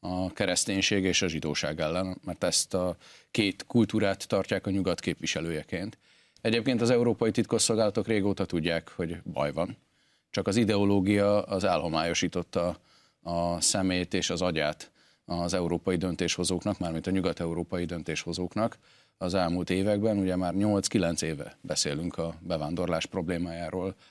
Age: 40-59